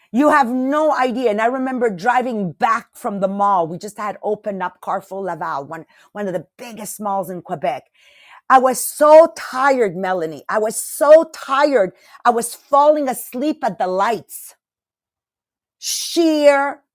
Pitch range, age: 190-260 Hz, 40-59